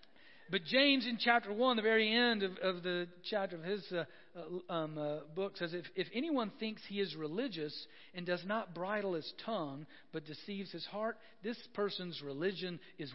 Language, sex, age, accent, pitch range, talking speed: English, male, 50-69, American, 170-245 Hz, 185 wpm